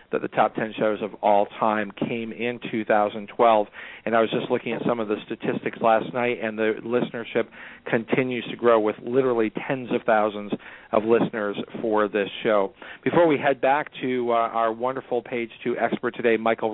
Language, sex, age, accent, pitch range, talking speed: English, male, 40-59, American, 110-120 Hz, 185 wpm